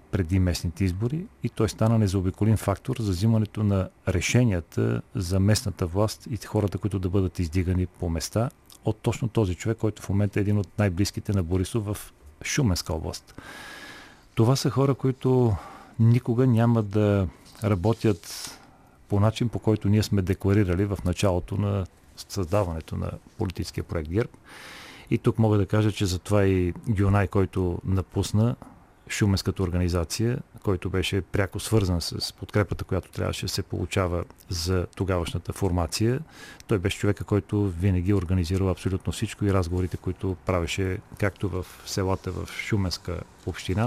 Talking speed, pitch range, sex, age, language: 145 wpm, 95-110 Hz, male, 40-59, Bulgarian